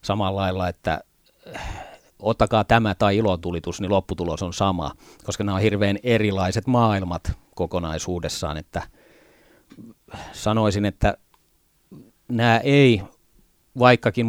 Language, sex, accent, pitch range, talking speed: Finnish, male, native, 100-120 Hz, 100 wpm